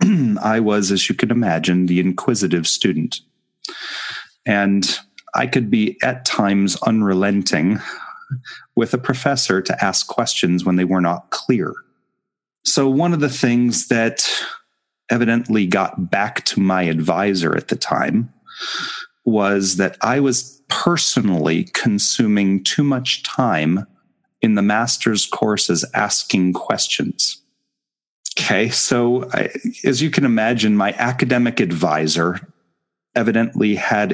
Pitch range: 95-130 Hz